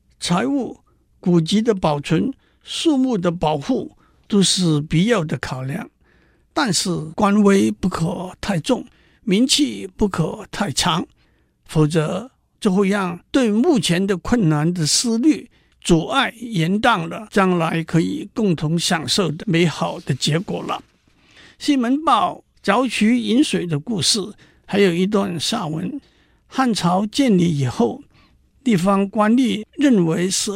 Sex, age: male, 60-79